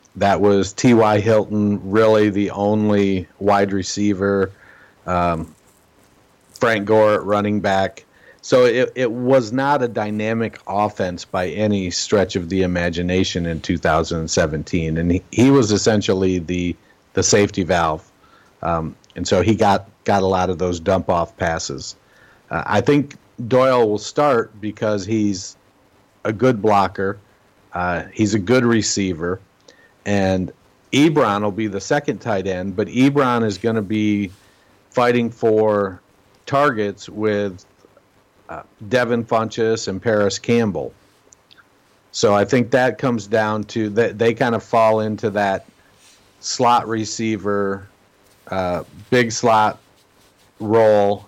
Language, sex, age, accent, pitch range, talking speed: English, male, 50-69, American, 95-115 Hz, 130 wpm